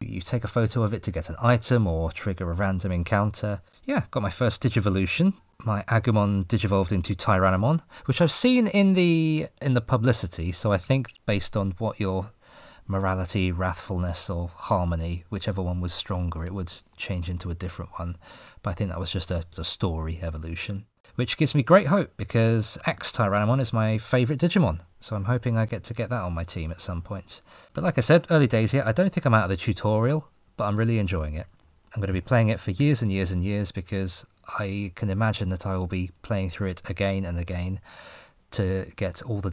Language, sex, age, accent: English, male, 20-39, British